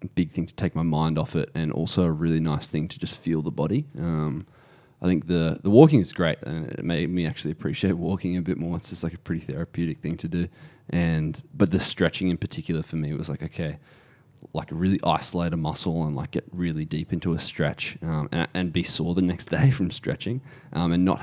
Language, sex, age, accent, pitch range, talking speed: English, male, 20-39, Australian, 80-90 Hz, 235 wpm